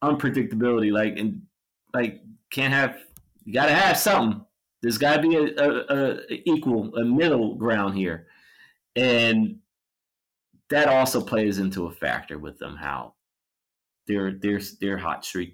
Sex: male